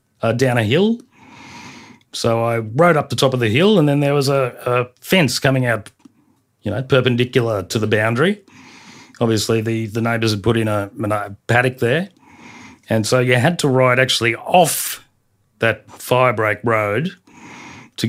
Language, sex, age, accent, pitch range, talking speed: English, male, 40-59, Australian, 110-140 Hz, 170 wpm